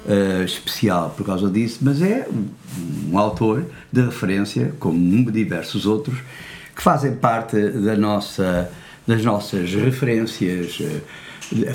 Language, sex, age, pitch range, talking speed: Portuguese, male, 60-79, 100-135 Hz, 130 wpm